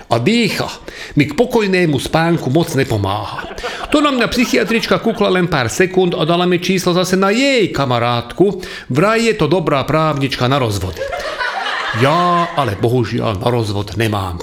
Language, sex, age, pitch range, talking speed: Slovak, male, 40-59, 125-180 Hz, 155 wpm